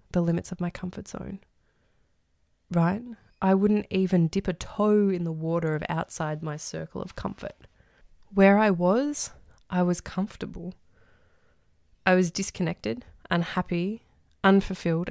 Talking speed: 130 wpm